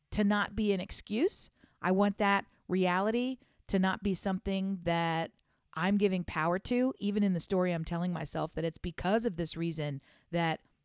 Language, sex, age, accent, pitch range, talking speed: English, female, 40-59, American, 165-230 Hz, 175 wpm